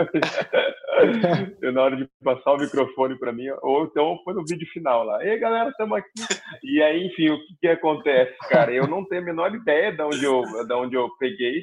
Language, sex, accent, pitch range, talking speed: Portuguese, male, Brazilian, 120-170 Hz, 215 wpm